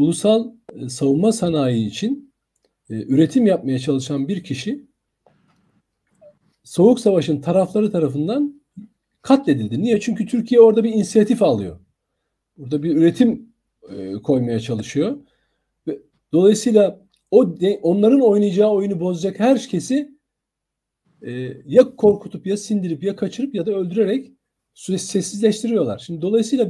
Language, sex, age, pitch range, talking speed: Turkish, male, 50-69, 145-225 Hz, 105 wpm